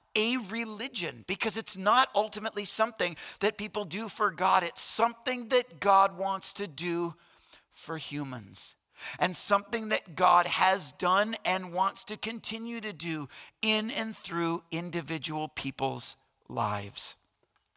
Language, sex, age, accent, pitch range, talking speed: English, male, 50-69, American, 155-205 Hz, 130 wpm